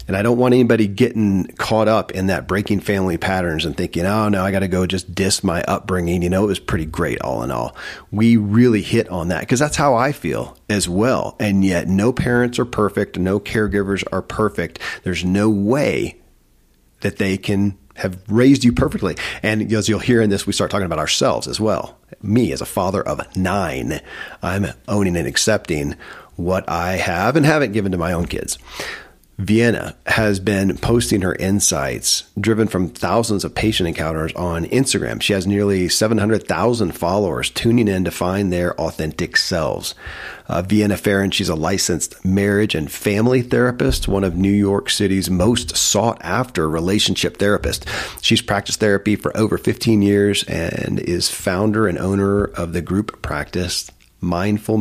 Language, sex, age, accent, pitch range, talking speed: English, male, 40-59, American, 90-110 Hz, 175 wpm